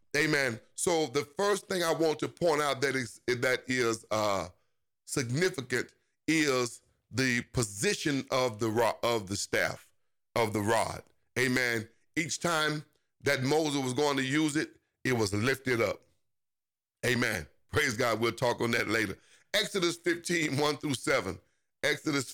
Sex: male